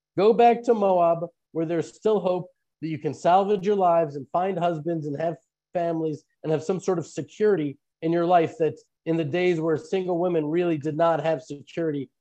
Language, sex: English, male